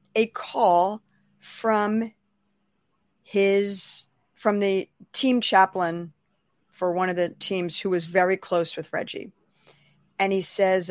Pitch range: 175-215 Hz